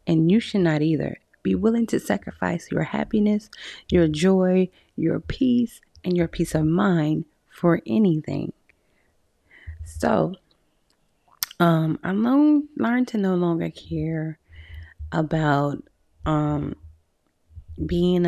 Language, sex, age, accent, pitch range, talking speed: English, female, 30-49, American, 135-190 Hz, 110 wpm